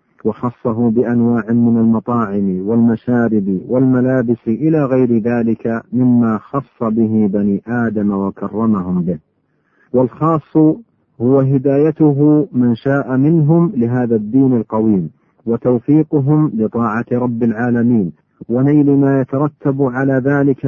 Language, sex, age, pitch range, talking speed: Arabic, male, 50-69, 110-135 Hz, 100 wpm